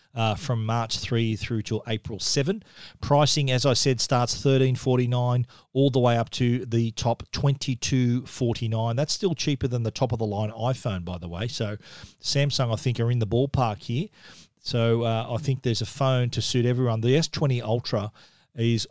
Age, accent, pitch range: 40-59, Australian, 115-140 Hz